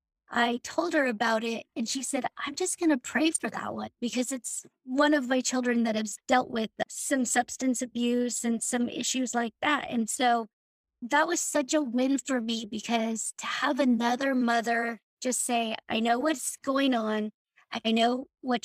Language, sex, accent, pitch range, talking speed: English, female, American, 230-275 Hz, 185 wpm